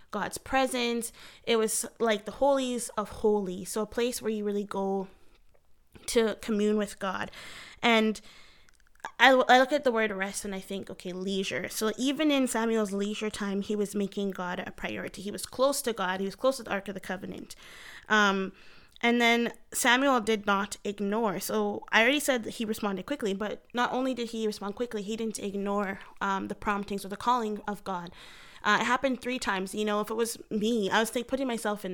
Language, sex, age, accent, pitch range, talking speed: English, female, 20-39, American, 200-235 Hz, 205 wpm